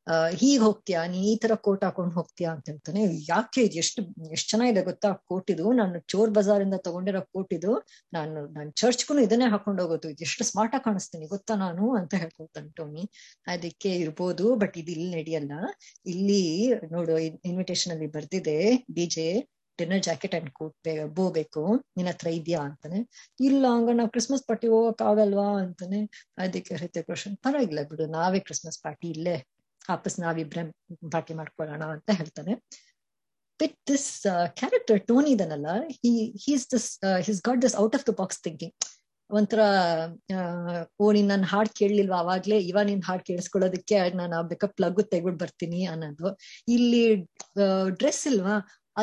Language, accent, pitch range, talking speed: Kannada, native, 170-220 Hz, 140 wpm